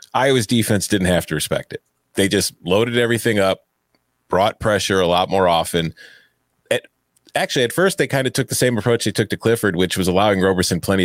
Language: English